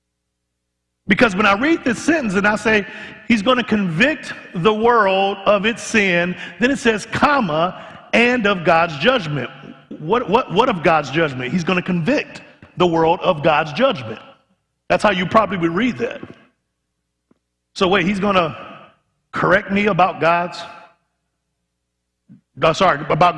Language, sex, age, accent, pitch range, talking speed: English, male, 50-69, American, 150-205 Hz, 150 wpm